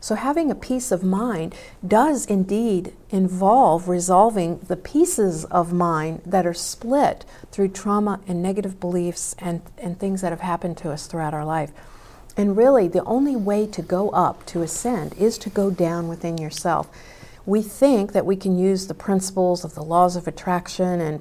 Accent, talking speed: American, 180 wpm